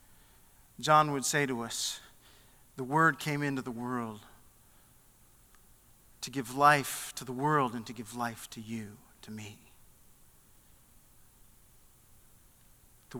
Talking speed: 120 wpm